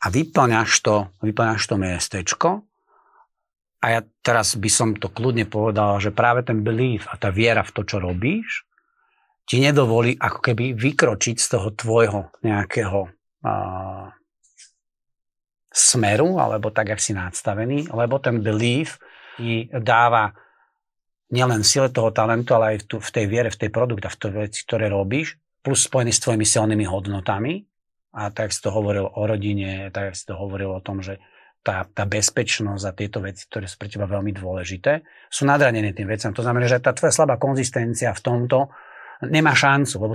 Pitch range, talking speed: 105-130 Hz, 170 wpm